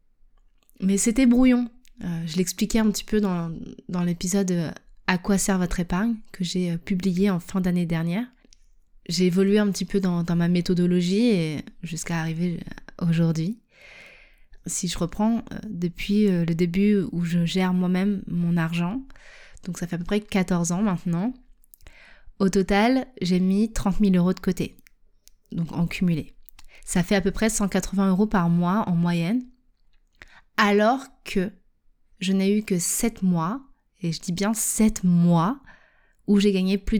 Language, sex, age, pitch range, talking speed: French, female, 20-39, 175-210 Hz, 160 wpm